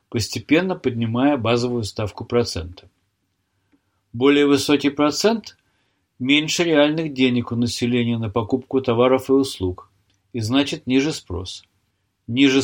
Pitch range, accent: 100-140 Hz, native